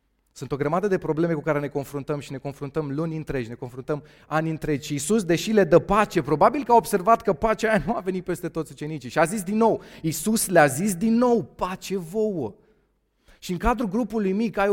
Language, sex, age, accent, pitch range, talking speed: Romanian, male, 30-49, native, 110-185 Hz, 225 wpm